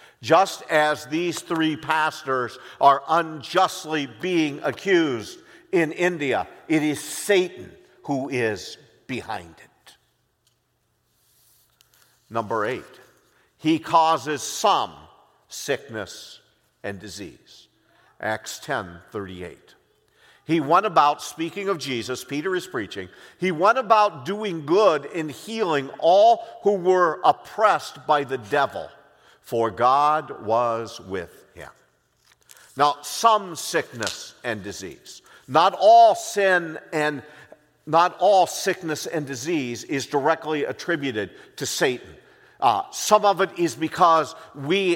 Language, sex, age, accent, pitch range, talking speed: English, male, 50-69, American, 140-180 Hz, 110 wpm